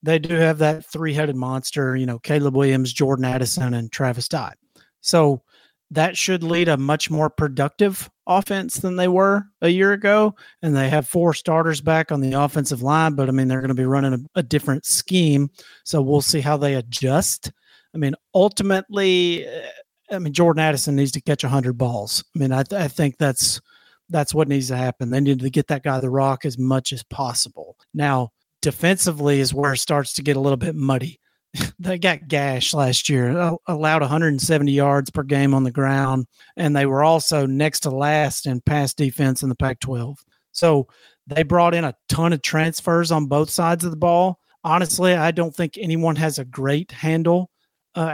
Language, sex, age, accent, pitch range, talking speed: English, male, 40-59, American, 135-170 Hz, 200 wpm